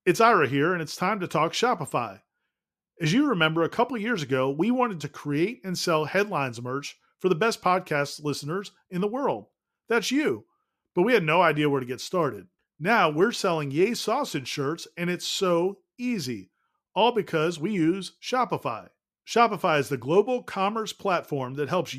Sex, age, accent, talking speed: male, 40-59, American, 180 wpm